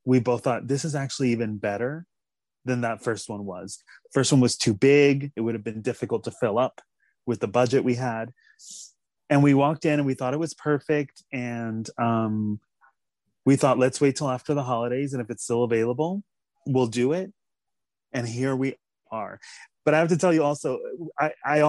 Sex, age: male, 30-49